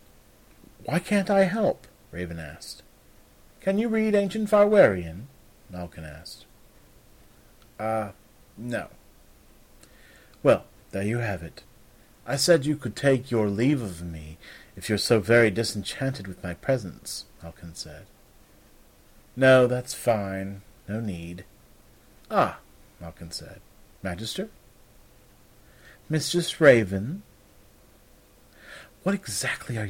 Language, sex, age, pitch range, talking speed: English, male, 40-59, 95-130 Hz, 105 wpm